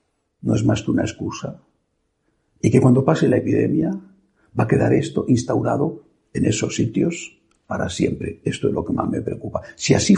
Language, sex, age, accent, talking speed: Spanish, male, 60-79, Spanish, 185 wpm